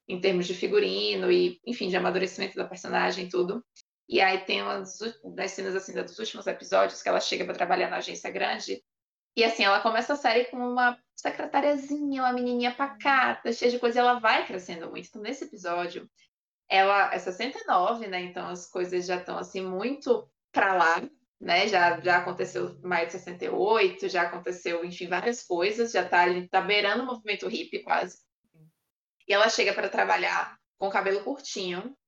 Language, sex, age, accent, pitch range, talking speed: Portuguese, female, 20-39, Brazilian, 180-245 Hz, 175 wpm